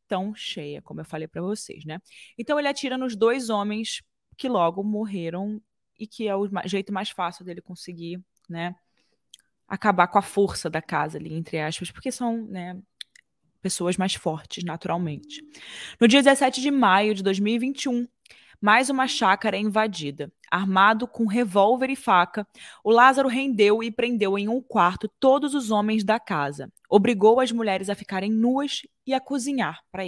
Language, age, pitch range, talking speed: Portuguese, 20-39, 190-250 Hz, 165 wpm